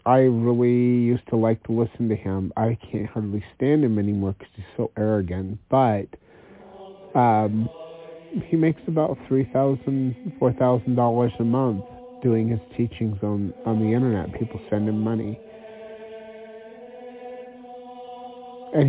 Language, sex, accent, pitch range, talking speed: English, male, American, 100-140 Hz, 125 wpm